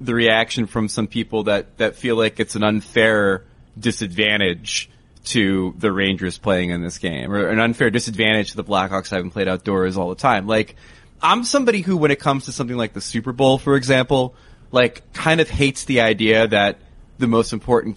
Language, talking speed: English, 195 wpm